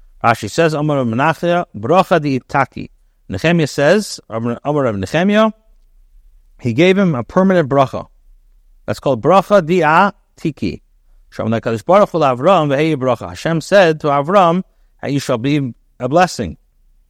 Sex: male